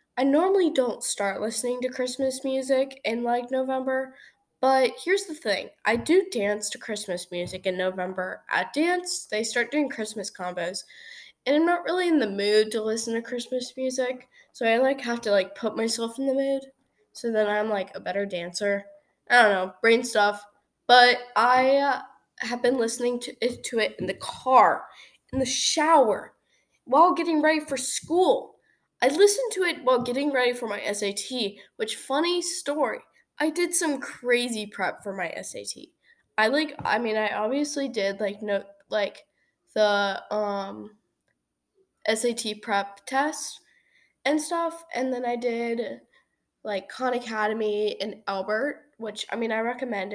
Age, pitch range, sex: 10-29, 205-270 Hz, female